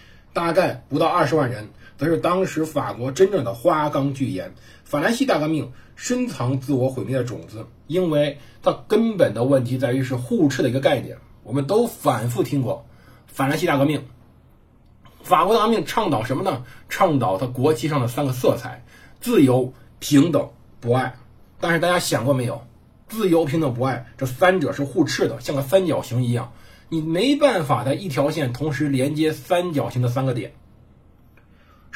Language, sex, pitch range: Chinese, male, 125-160 Hz